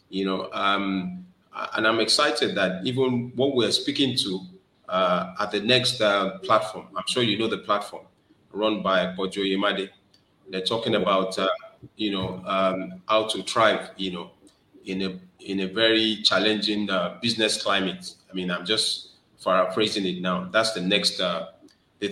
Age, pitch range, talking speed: 30-49, 95-110 Hz, 170 wpm